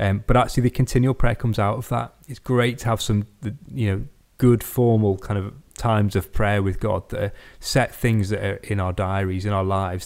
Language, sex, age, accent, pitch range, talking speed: English, male, 30-49, British, 100-115 Hz, 220 wpm